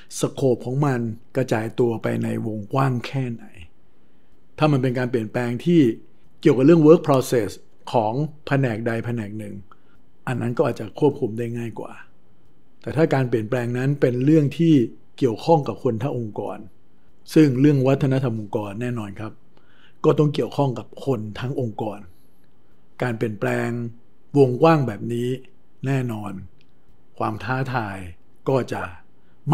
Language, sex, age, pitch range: Thai, male, 60-79, 110-135 Hz